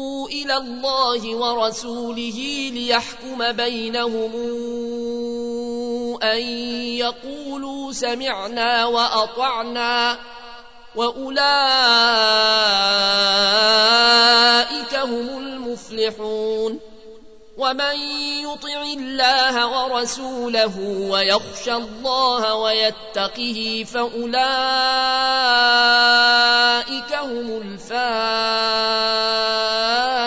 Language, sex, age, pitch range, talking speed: Arabic, male, 30-49, 225-260 Hz, 40 wpm